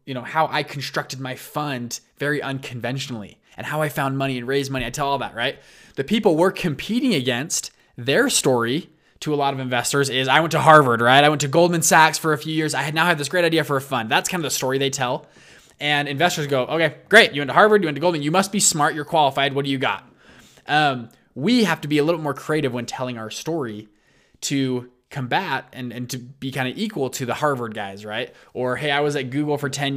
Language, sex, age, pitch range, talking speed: English, male, 20-39, 130-155 Hz, 250 wpm